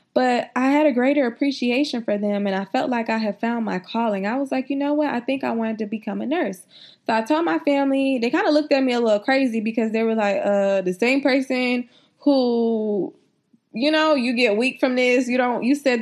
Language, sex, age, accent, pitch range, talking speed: English, female, 20-39, American, 215-275 Hz, 240 wpm